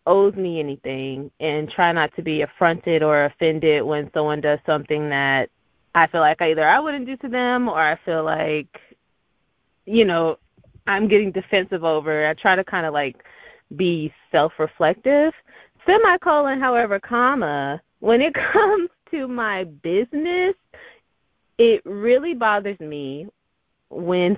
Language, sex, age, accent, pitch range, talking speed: English, female, 20-39, American, 170-250 Hz, 145 wpm